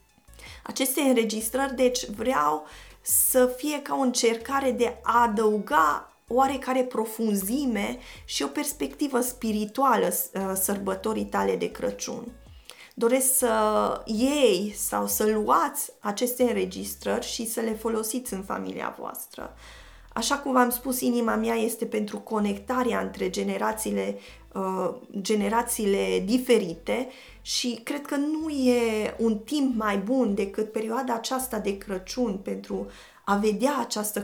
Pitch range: 200-255 Hz